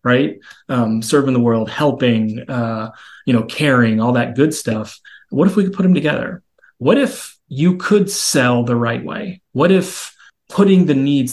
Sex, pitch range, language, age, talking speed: male, 125-195 Hz, English, 30-49, 180 wpm